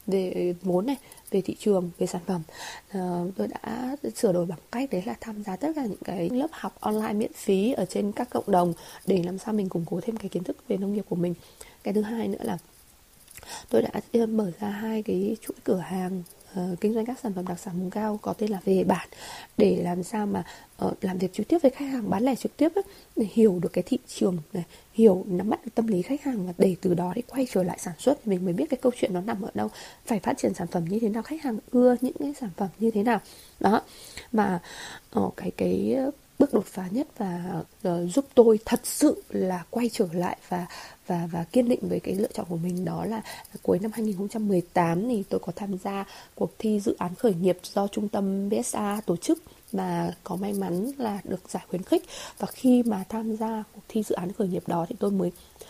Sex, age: female, 20-39